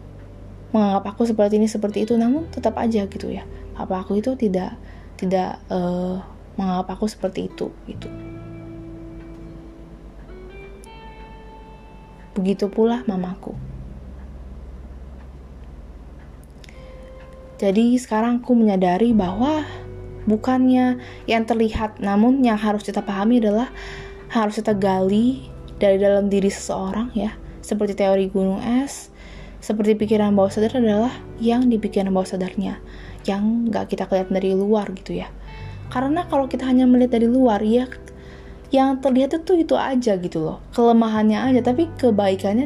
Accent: native